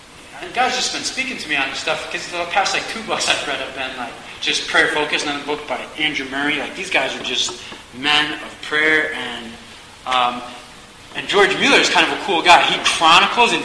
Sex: male